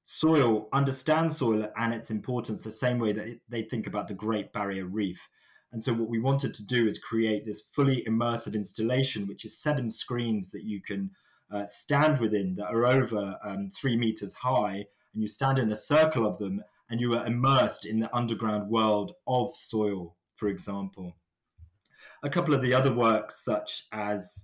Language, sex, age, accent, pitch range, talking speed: English, male, 30-49, British, 105-125 Hz, 185 wpm